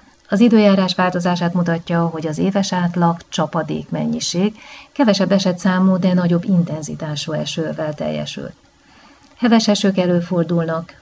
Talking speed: 110 wpm